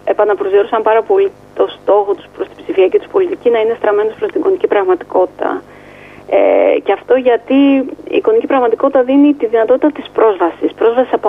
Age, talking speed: 30-49, 175 wpm